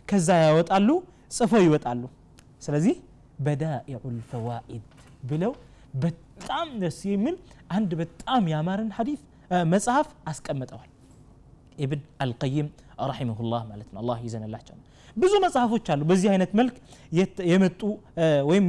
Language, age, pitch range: Amharic, 30-49, 140-195 Hz